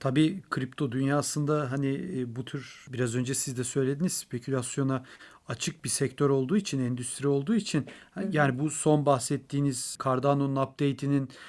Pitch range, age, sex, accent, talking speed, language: 140-165 Hz, 40-59, male, native, 135 wpm, Turkish